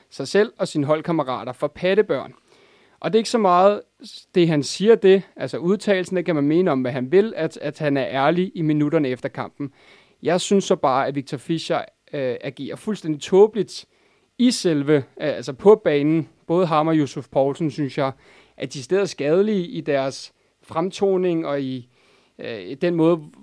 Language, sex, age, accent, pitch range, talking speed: English, male, 30-49, Danish, 140-180 Hz, 190 wpm